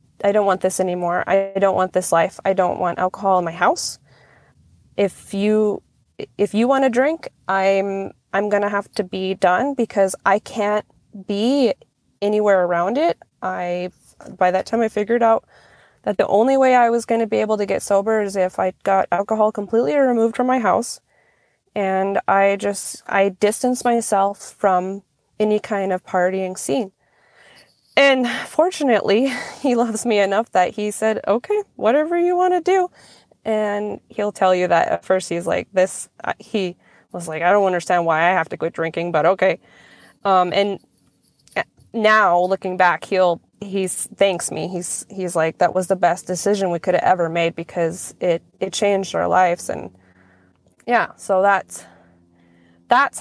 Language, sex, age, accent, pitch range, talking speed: English, female, 20-39, American, 180-220 Hz, 175 wpm